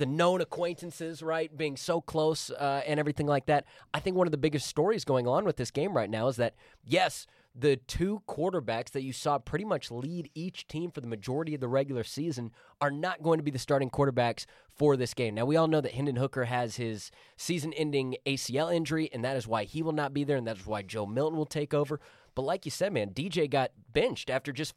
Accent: American